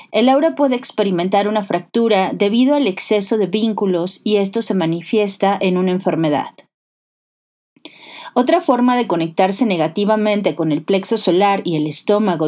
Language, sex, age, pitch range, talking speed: Spanish, female, 30-49, 185-230 Hz, 145 wpm